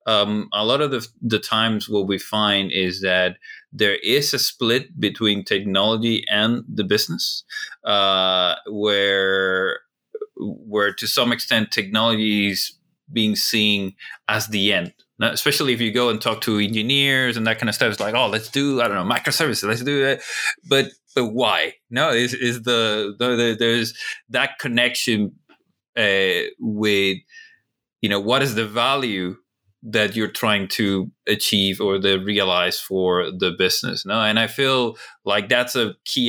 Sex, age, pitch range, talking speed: male, 30-49, 100-125 Hz, 160 wpm